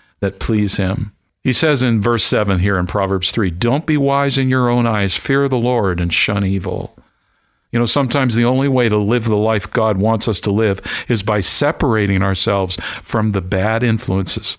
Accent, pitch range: American, 95-120 Hz